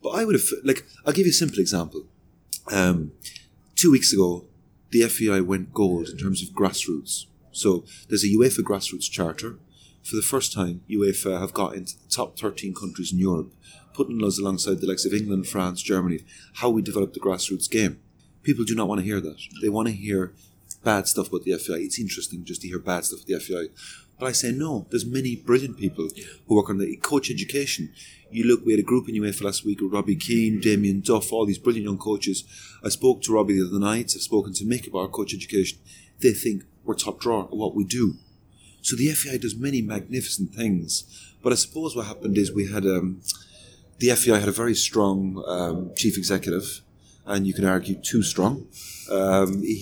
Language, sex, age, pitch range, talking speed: English, male, 30-49, 95-115 Hz, 210 wpm